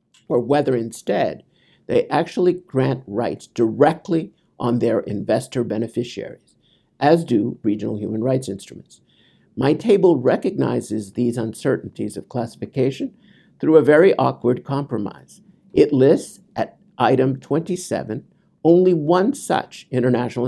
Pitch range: 115-155 Hz